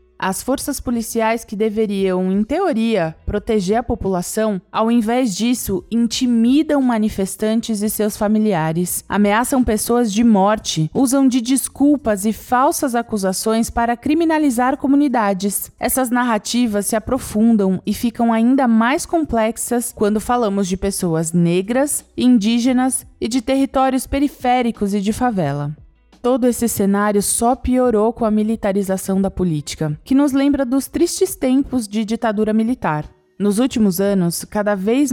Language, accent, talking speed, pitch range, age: Portuguese, Brazilian, 130 wpm, 200-250 Hz, 20-39